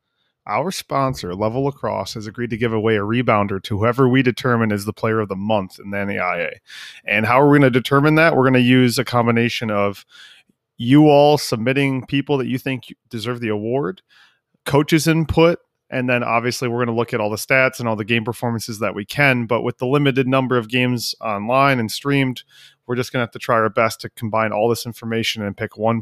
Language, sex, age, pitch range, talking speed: English, male, 30-49, 110-135 Hz, 225 wpm